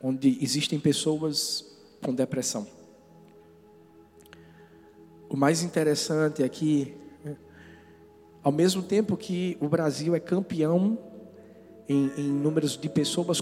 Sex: male